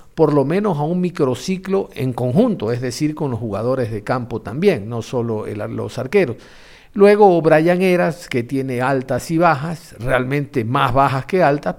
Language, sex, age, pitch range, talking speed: Spanish, male, 50-69, 125-165 Hz, 170 wpm